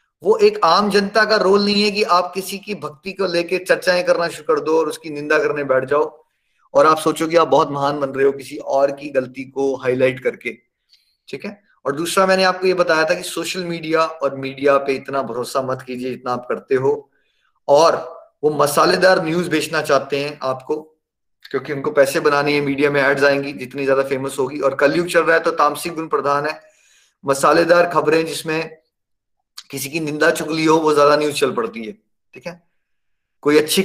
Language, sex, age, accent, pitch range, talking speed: Hindi, male, 20-39, native, 140-175 Hz, 205 wpm